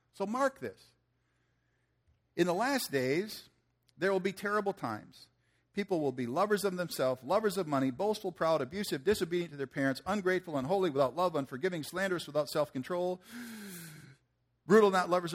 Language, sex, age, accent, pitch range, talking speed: English, male, 50-69, American, 130-190 Hz, 155 wpm